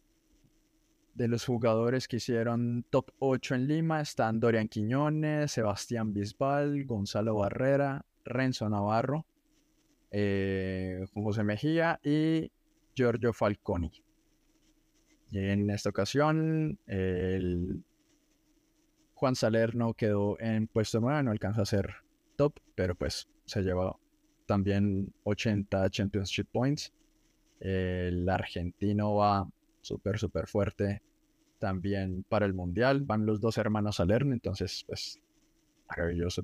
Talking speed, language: 115 wpm, Spanish